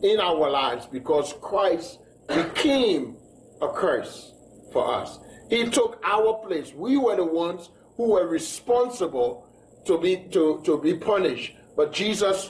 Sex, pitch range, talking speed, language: male, 155-225 Hz, 140 wpm, English